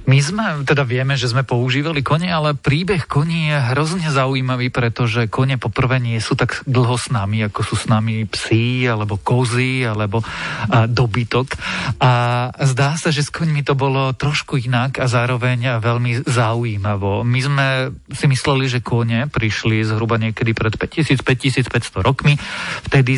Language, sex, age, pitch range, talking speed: Slovak, male, 40-59, 115-140 Hz, 160 wpm